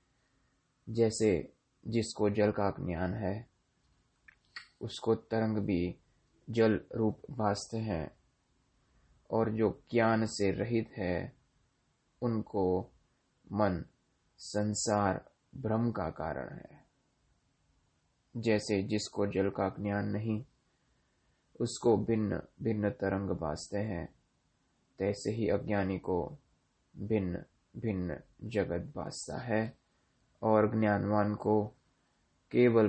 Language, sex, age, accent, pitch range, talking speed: Hindi, male, 20-39, native, 100-115 Hz, 95 wpm